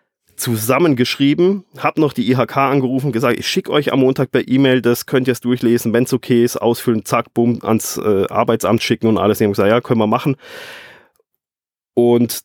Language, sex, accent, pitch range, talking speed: German, male, German, 105-130 Hz, 195 wpm